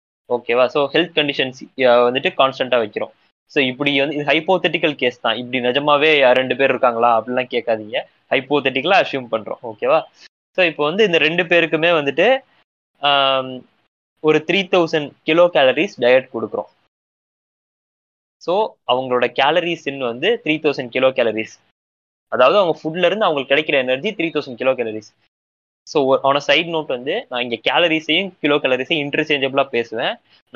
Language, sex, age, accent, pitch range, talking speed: Tamil, male, 20-39, native, 125-160 Hz, 135 wpm